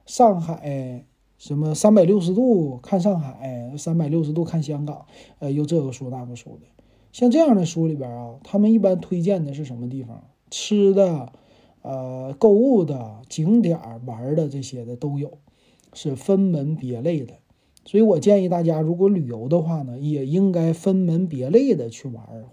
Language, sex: Chinese, male